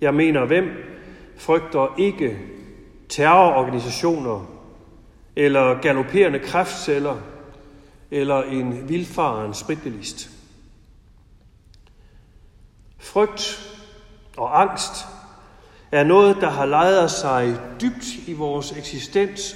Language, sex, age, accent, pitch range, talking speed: Danish, male, 60-79, native, 115-190 Hz, 80 wpm